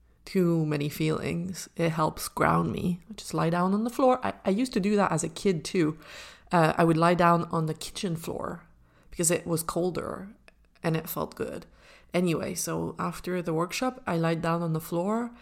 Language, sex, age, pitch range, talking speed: English, female, 30-49, 165-210 Hz, 200 wpm